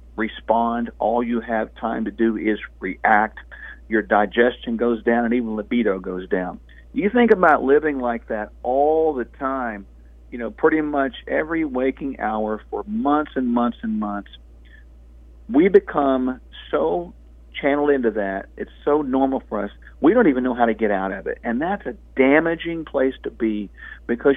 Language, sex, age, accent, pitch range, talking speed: English, male, 50-69, American, 110-170 Hz, 170 wpm